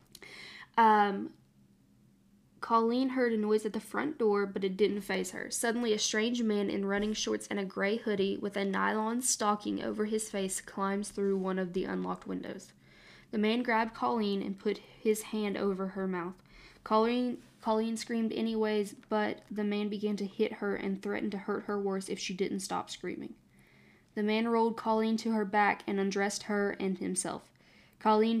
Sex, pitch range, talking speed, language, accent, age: female, 195-215 Hz, 180 wpm, English, American, 10-29